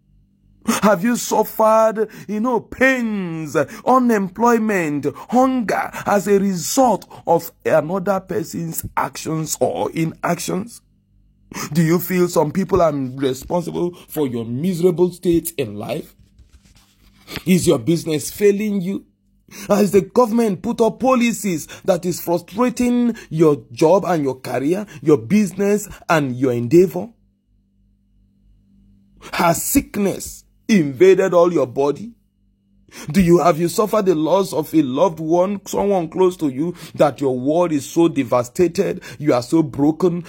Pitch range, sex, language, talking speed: 135-205 Hz, male, English, 125 wpm